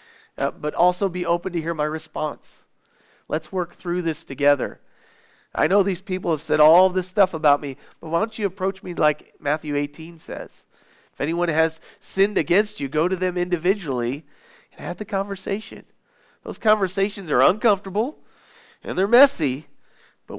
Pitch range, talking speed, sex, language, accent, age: 125-180 Hz, 170 wpm, male, English, American, 40-59